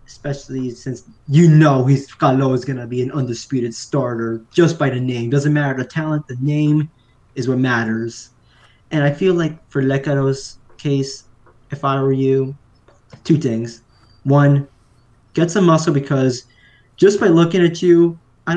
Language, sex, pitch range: English, male, 125-160 Hz